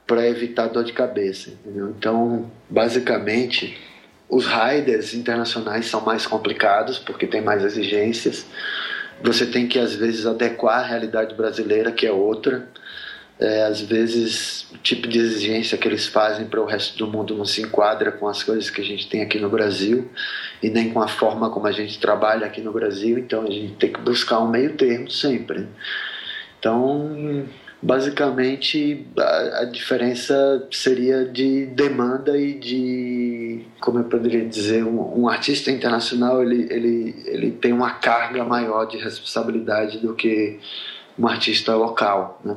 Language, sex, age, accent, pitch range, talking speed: Portuguese, male, 20-39, Brazilian, 110-120 Hz, 155 wpm